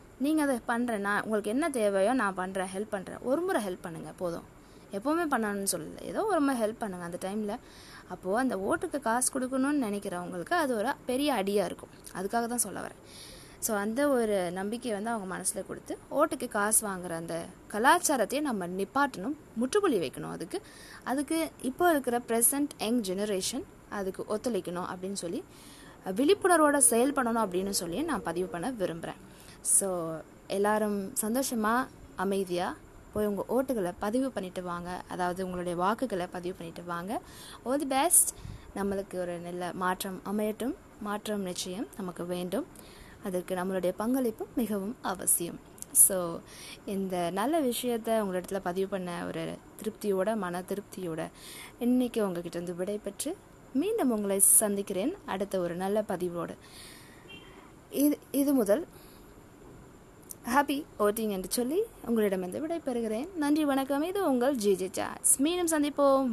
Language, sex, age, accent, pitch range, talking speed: Tamil, female, 20-39, native, 190-270 Hz, 135 wpm